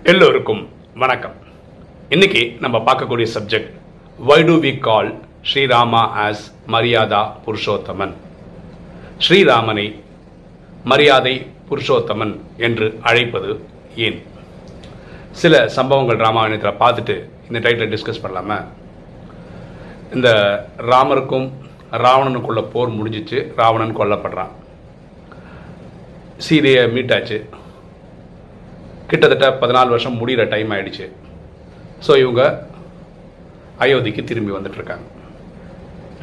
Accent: native